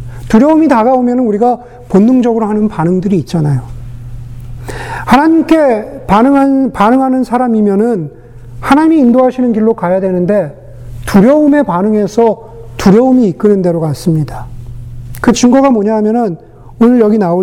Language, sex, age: Korean, male, 40-59